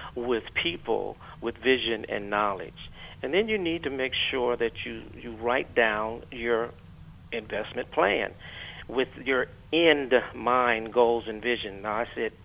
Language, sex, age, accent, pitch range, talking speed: English, male, 50-69, American, 115-145 Hz, 150 wpm